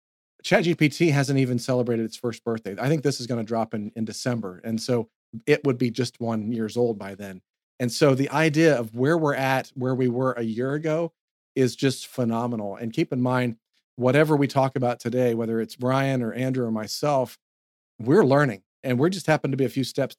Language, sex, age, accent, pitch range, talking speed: English, male, 40-59, American, 115-140 Hz, 215 wpm